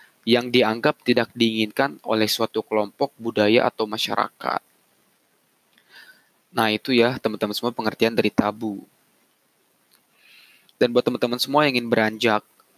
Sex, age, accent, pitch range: male, 20-39, native, 105-125 Hz